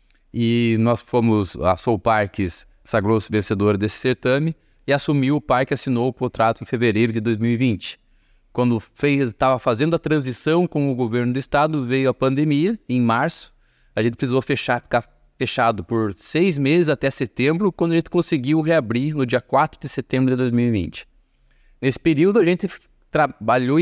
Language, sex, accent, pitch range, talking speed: Portuguese, male, Brazilian, 115-140 Hz, 160 wpm